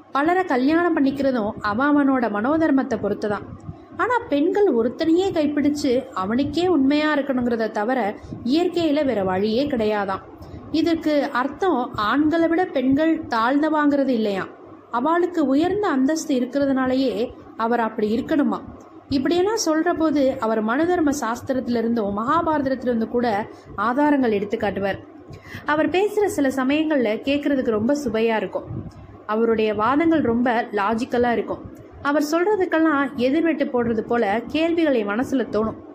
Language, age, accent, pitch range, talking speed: Tamil, 20-39, native, 220-310 Hz, 105 wpm